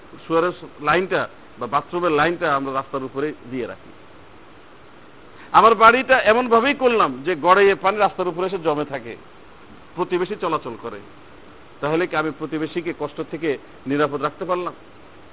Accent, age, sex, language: native, 50-69, male, Bengali